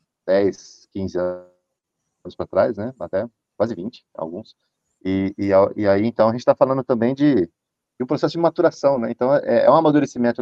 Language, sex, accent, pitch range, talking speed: Portuguese, male, Brazilian, 100-135 Hz, 190 wpm